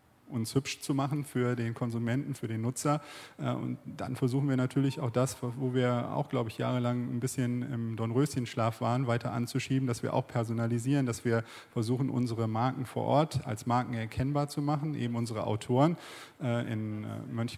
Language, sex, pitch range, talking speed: German, male, 115-130 Hz, 170 wpm